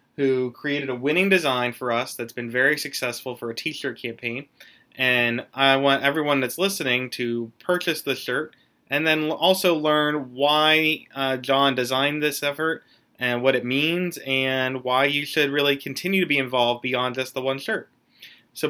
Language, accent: English, American